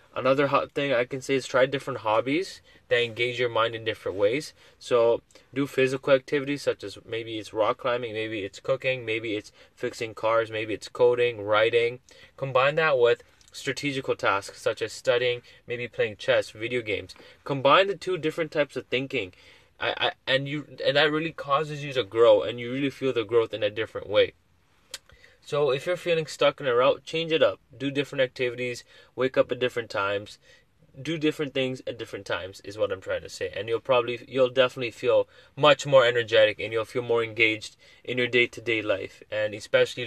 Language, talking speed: English, 195 wpm